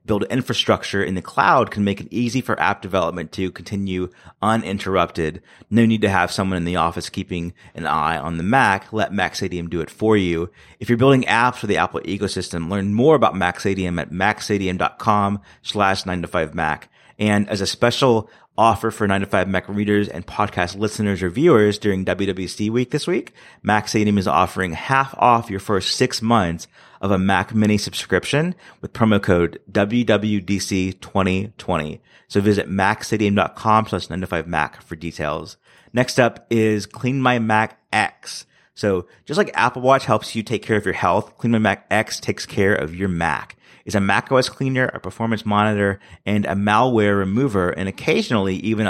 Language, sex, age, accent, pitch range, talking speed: English, male, 30-49, American, 95-110 Hz, 175 wpm